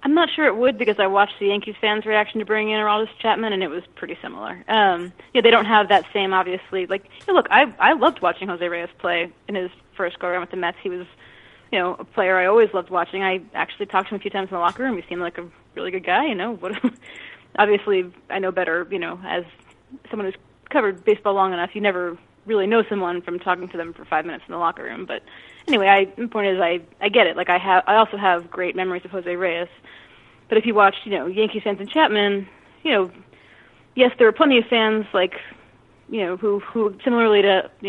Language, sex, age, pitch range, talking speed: English, female, 30-49, 185-215 Hz, 245 wpm